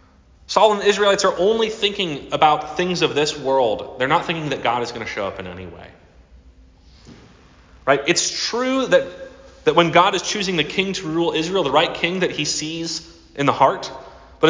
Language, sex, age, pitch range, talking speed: English, male, 30-49, 135-195 Hz, 205 wpm